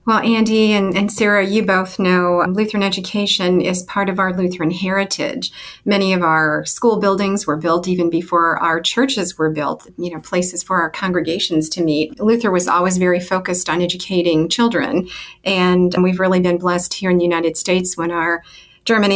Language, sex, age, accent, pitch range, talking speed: English, female, 40-59, American, 170-195 Hz, 185 wpm